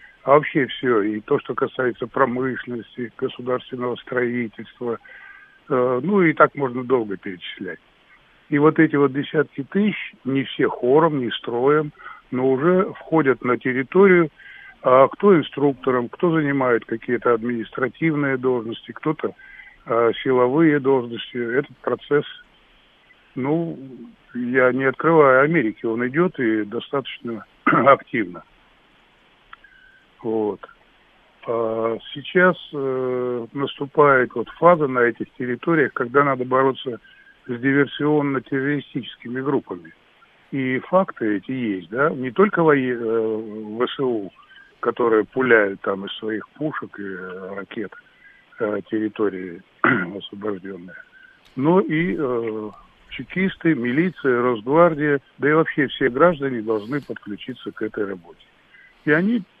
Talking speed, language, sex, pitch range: 110 wpm, Russian, male, 120-160 Hz